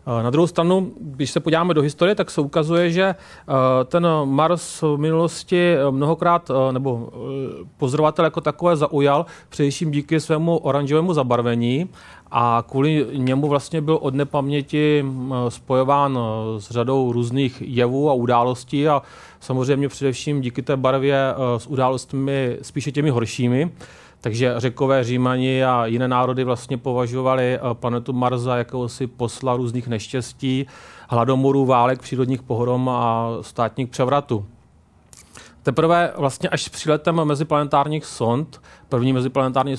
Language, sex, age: Czech, male, 30-49